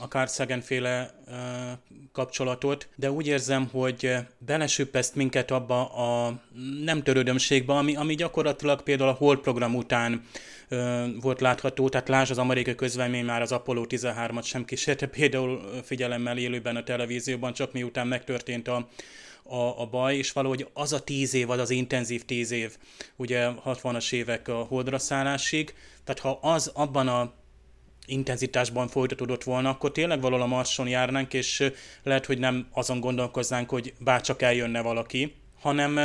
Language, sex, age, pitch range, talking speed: Hungarian, male, 30-49, 125-135 Hz, 145 wpm